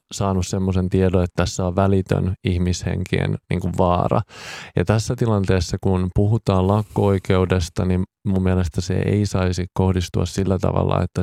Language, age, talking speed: Finnish, 20-39, 135 wpm